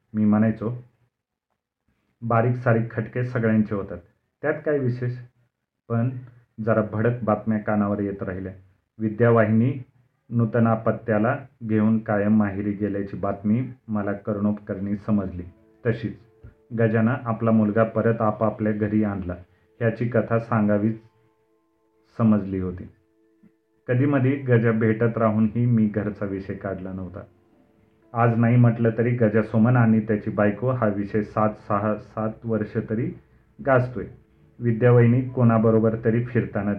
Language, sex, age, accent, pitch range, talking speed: Marathi, male, 40-59, native, 105-115 Hz, 115 wpm